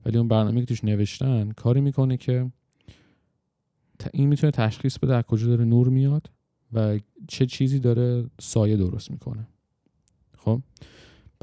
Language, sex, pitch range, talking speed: Persian, male, 105-125 Hz, 120 wpm